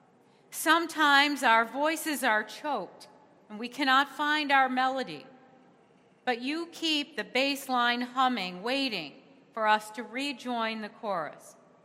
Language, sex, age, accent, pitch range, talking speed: English, female, 40-59, American, 225-275 Hz, 125 wpm